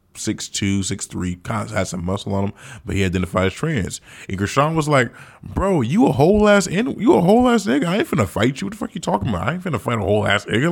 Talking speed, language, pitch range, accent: 265 wpm, English, 90-120 Hz, American